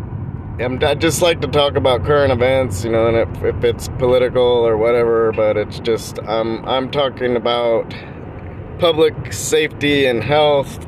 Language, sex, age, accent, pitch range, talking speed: English, male, 20-39, American, 110-135 Hz, 160 wpm